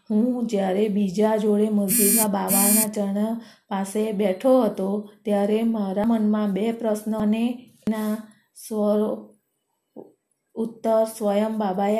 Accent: native